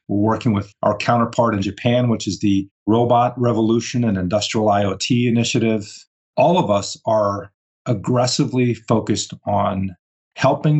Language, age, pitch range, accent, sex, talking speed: English, 40-59, 100-120 Hz, American, male, 135 wpm